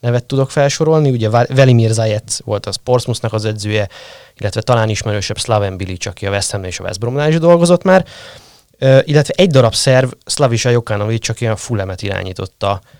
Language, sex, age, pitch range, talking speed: Hungarian, male, 20-39, 100-130 Hz, 180 wpm